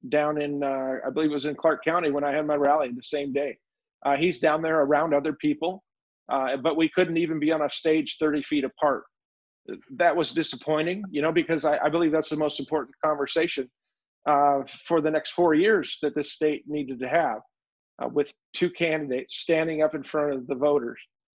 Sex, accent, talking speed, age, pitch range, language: male, American, 210 wpm, 50-69, 145-170 Hz, English